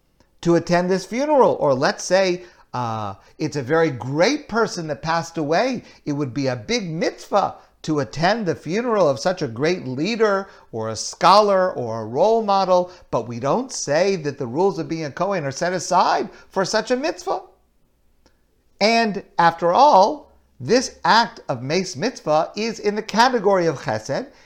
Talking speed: 170 wpm